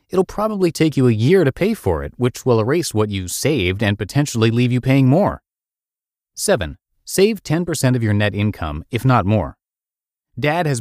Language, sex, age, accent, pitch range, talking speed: English, male, 30-49, American, 100-145 Hz, 190 wpm